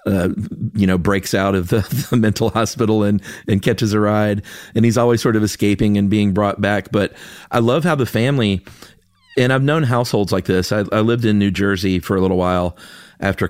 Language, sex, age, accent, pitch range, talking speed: English, male, 40-59, American, 95-110 Hz, 215 wpm